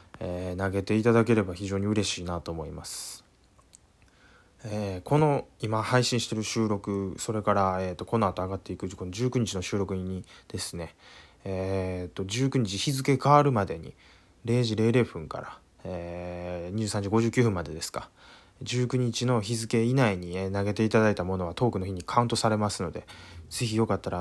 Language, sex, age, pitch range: Japanese, male, 20-39, 95-120 Hz